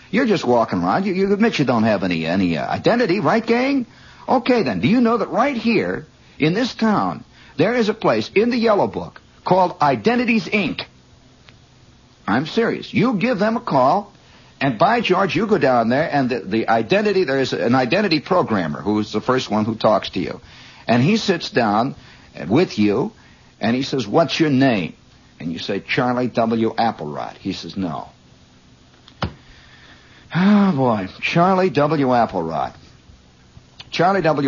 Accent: American